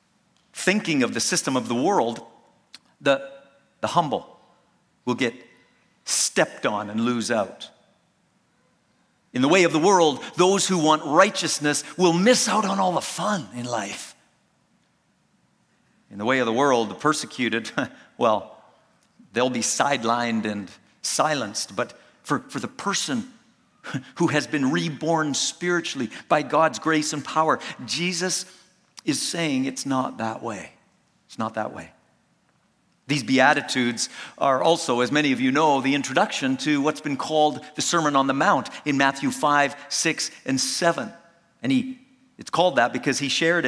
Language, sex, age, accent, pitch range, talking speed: English, male, 50-69, American, 130-175 Hz, 150 wpm